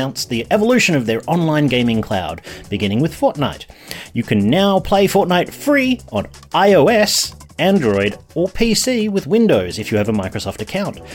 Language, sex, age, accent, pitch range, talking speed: English, male, 30-49, Australian, 105-160 Hz, 155 wpm